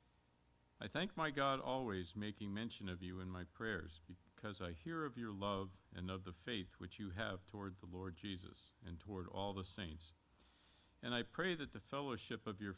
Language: English